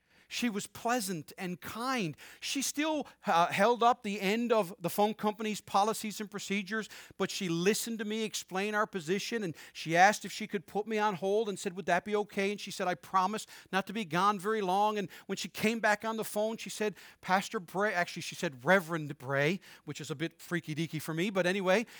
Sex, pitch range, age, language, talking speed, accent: male, 185-235 Hz, 40-59, English, 220 wpm, American